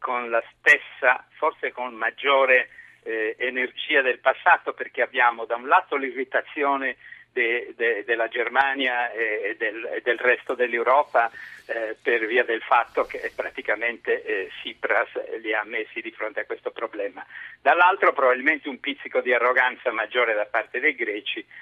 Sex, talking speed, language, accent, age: male, 140 wpm, Italian, native, 60-79